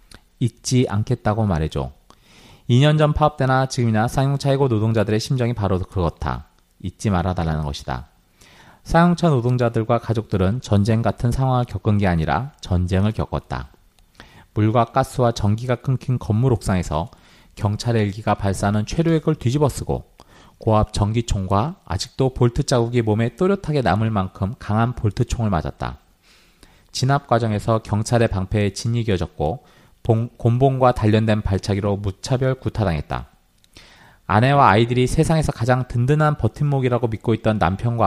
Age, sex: 40-59, male